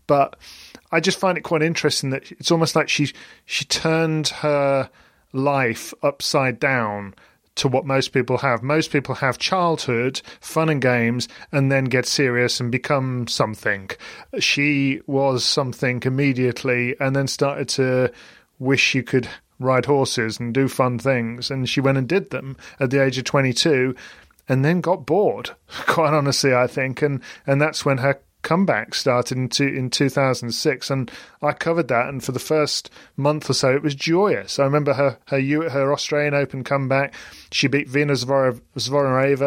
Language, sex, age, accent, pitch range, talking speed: English, male, 40-59, British, 130-145 Hz, 165 wpm